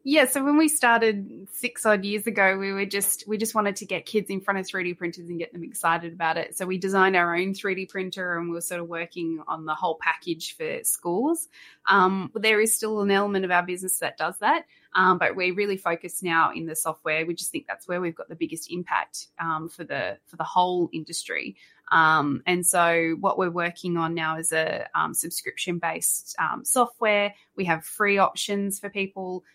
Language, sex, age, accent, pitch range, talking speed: English, female, 20-39, Australian, 170-200 Hz, 220 wpm